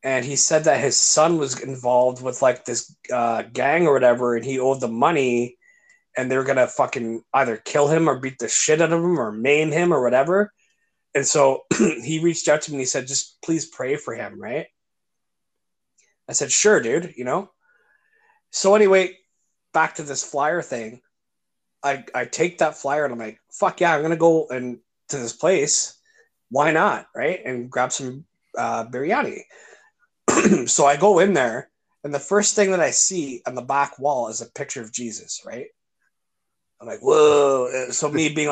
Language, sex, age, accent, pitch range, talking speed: English, male, 30-49, American, 125-170 Hz, 195 wpm